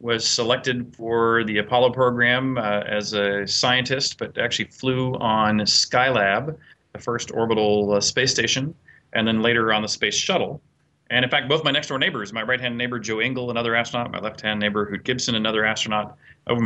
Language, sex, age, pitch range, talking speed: English, male, 30-49, 110-125 Hz, 180 wpm